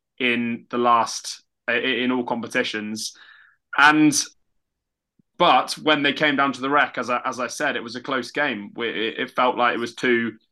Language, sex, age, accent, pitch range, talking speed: English, male, 20-39, British, 115-130 Hz, 170 wpm